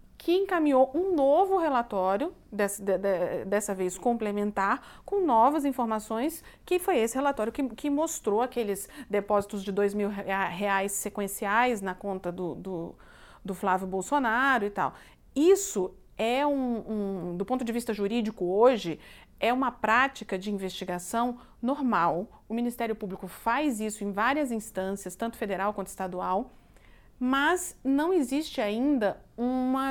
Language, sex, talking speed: Portuguese, female, 130 wpm